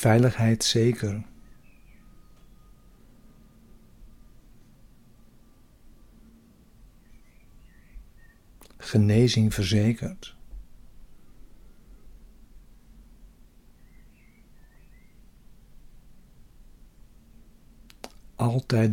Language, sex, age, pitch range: Dutch, male, 60-79, 90-115 Hz